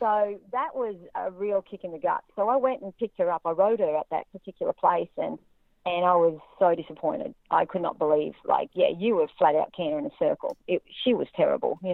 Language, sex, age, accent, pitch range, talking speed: English, female, 40-59, Australian, 165-200 Hz, 235 wpm